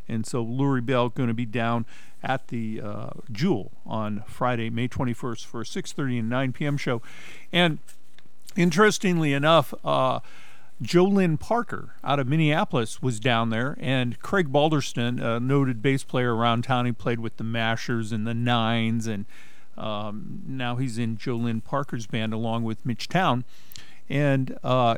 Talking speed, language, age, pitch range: 160 wpm, English, 50-69, 120-155 Hz